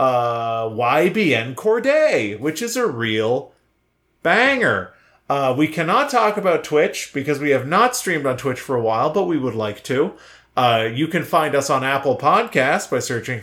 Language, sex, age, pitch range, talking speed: English, male, 30-49, 125-210 Hz, 175 wpm